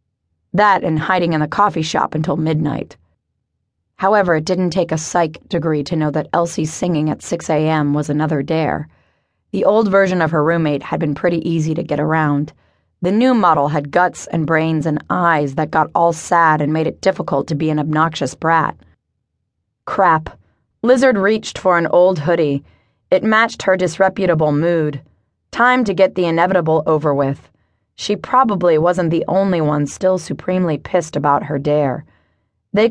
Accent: American